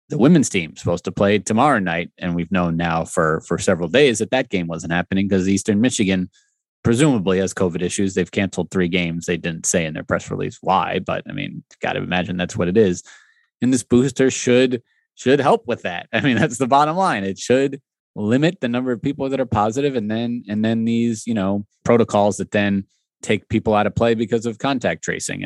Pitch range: 95-120 Hz